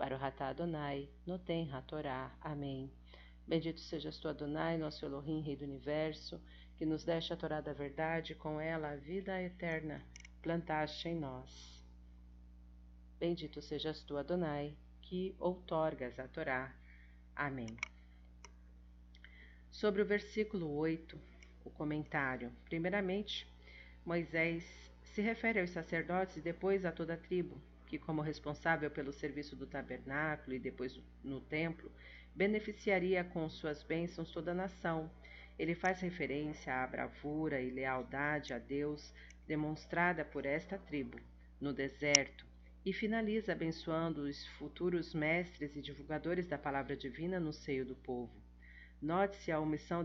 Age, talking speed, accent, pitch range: 40-59, 135 wpm, Brazilian, 130-165 Hz